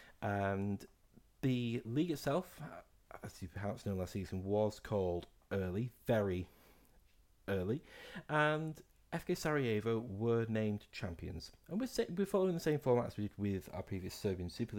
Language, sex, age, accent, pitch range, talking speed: English, male, 40-59, British, 90-125 Hz, 140 wpm